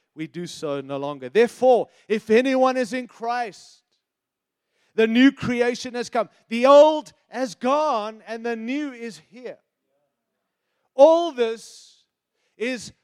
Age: 30-49